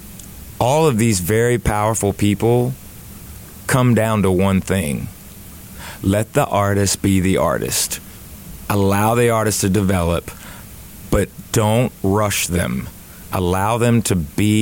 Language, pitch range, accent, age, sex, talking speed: English, 95-120 Hz, American, 30-49, male, 125 wpm